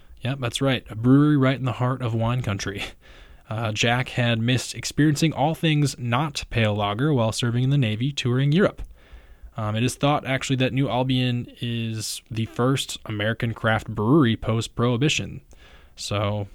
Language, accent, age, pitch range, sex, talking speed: English, American, 20-39, 110-135 Hz, male, 165 wpm